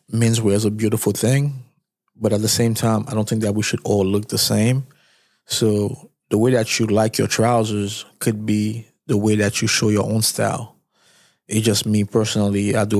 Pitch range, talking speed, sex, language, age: 105-120 Hz, 210 wpm, male, English, 20-39